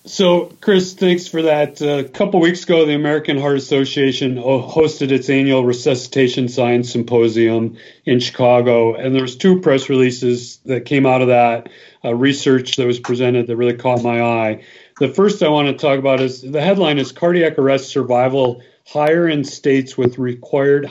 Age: 40-59